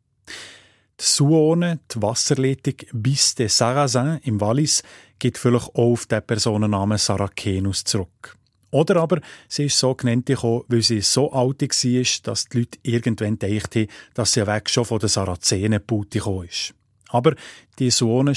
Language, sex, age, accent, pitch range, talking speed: German, male, 30-49, Austrian, 105-130 Hz, 155 wpm